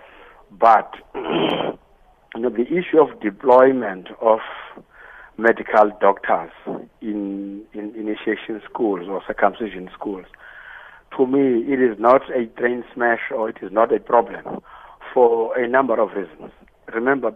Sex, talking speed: male, 130 wpm